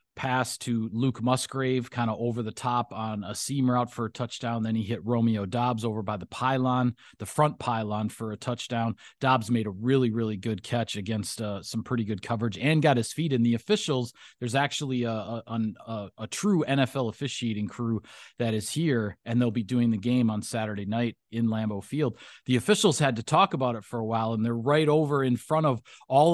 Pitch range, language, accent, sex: 115-135 Hz, English, American, male